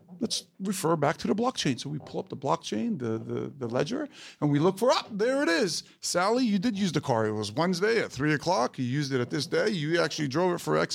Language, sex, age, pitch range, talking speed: Portuguese, male, 40-59, 150-195 Hz, 270 wpm